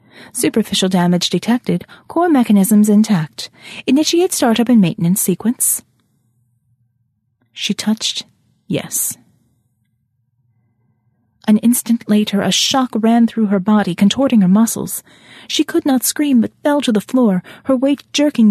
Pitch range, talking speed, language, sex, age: 160-235 Hz, 125 wpm, English, female, 30-49